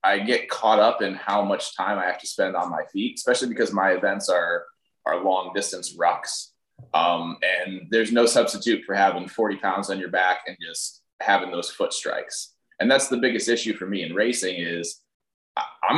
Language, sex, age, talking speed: English, male, 20-39, 200 wpm